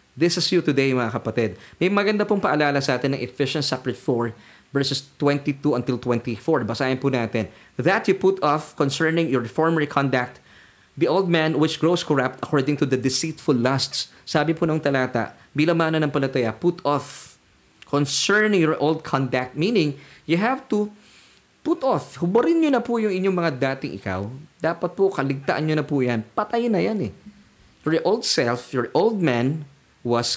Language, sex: Filipino, male